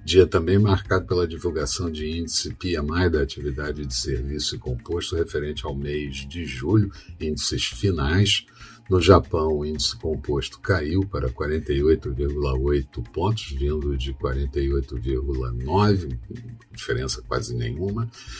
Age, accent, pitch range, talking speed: 50-69, Brazilian, 70-100 Hz, 115 wpm